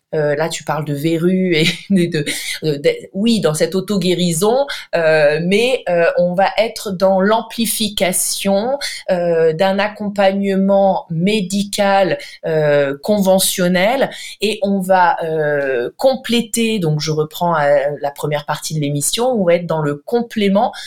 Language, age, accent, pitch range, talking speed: French, 20-39, French, 150-195 Hz, 140 wpm